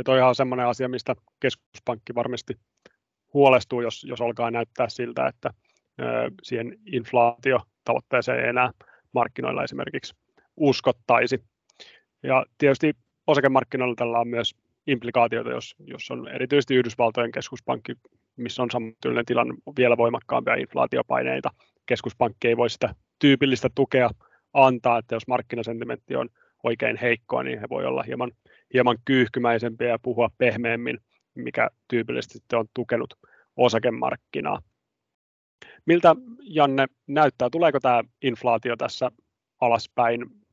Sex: male